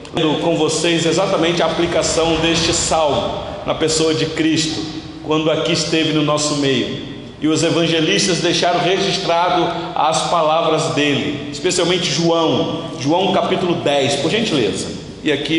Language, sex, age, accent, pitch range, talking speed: Portuguese, male, 40-59, Brazilian, 155-180 Hz, 130 wpm